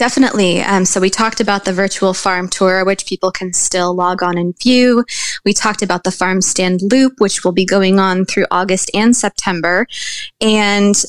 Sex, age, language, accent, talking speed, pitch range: female, 20-39, English, American, 190 wpm, 185-220 Hz